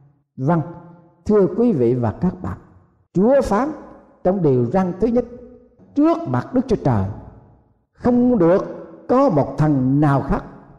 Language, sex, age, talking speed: Vietnamese, male, 50-69, 145 wpm